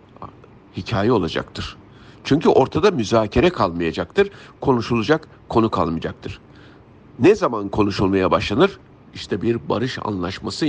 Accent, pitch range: native, 95-125 Hz